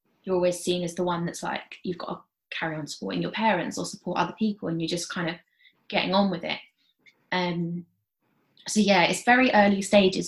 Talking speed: 215 wpm